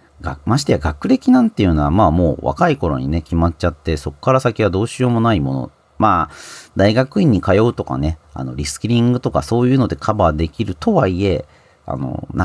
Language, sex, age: Japanese, male, 40-59